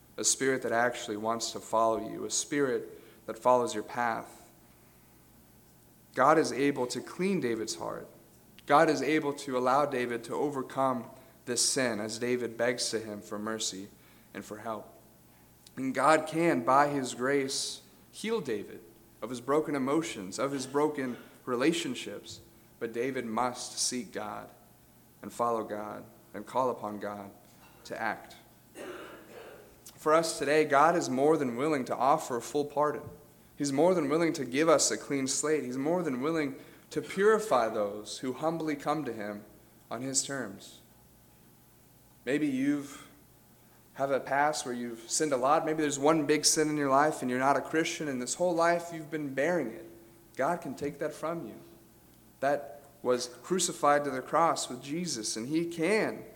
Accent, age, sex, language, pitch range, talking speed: American, 40-59, male, English, 115-155 Hz, 165 wpm